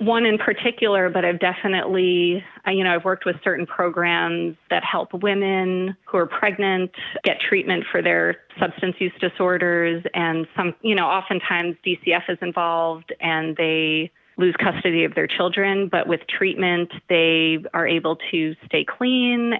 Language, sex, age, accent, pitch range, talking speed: English, female, 30-49, American, 165-190 Hz, 155 wpm